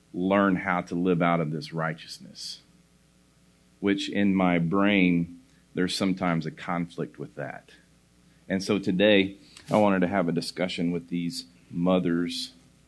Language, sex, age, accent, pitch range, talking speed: English, male, 40-59, American, 85-105 Hz, 140 wpm